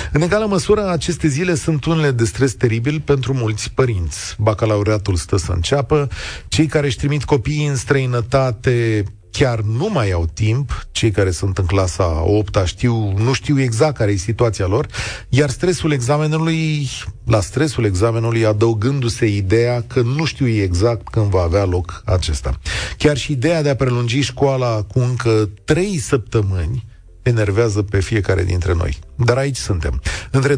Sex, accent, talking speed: male, native, 155 wpm